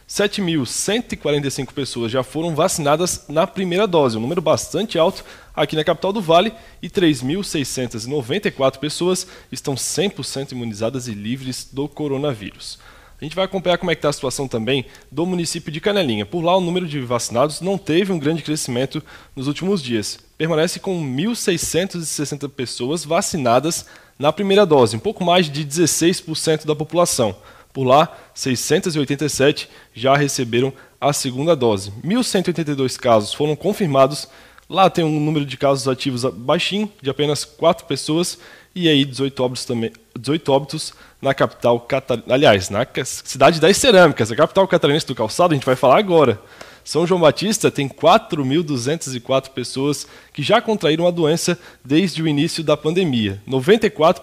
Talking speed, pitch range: 150 wpm, 135-175 Hz